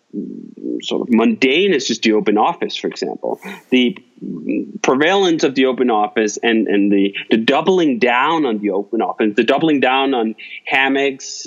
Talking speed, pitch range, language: 160 wpm, 120-175 Hz, English